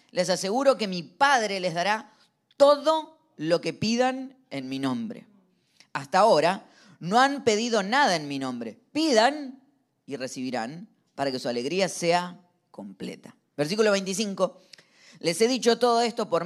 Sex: female